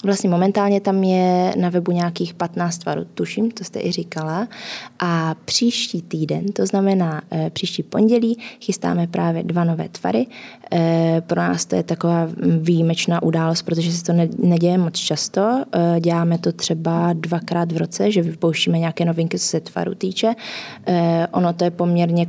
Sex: female